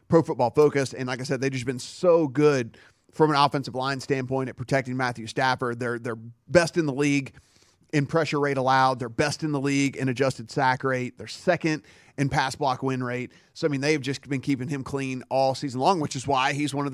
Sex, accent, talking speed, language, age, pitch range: male, American, 230 wpm, English, 30-49, 130-150 Hz